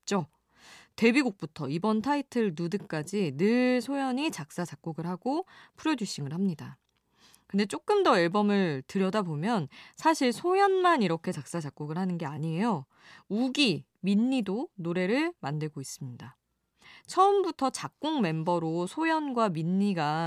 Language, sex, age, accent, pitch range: Korean, female, 20-39, native, 160-235 Hz